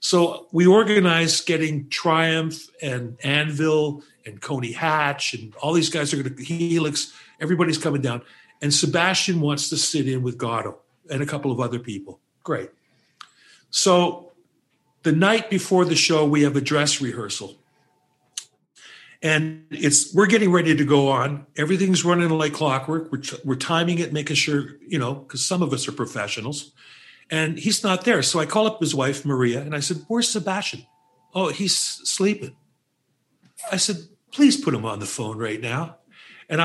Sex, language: male, English